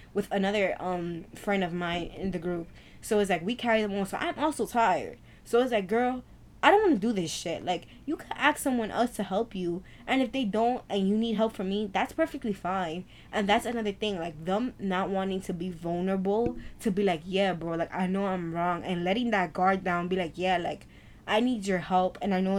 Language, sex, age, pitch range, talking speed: English, female, 10-29, 180-220 Hz, 240 wpm